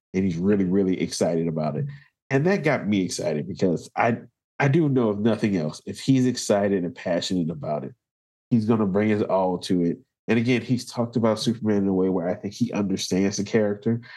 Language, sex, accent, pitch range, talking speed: English, male, American, 95-120 Hz, 215 wpm